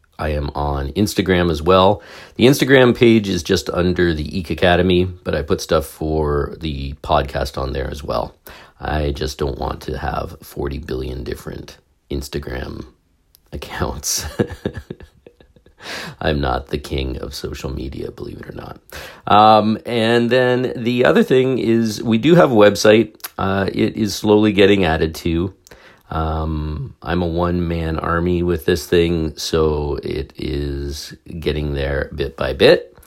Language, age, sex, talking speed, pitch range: English, 40-59, male, 150 wpm, 75-100 Hz